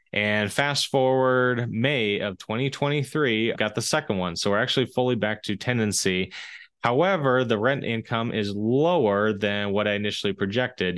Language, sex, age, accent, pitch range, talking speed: English, male, 20-39, American, 100-125 Hz, 155 wpm